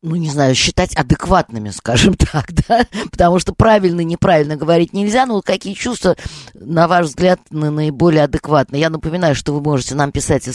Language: Russian